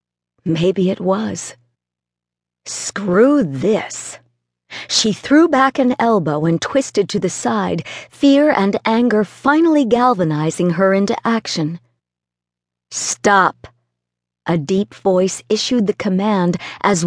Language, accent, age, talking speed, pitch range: English, American, 50-69, 110 wpm, 160-230 Hz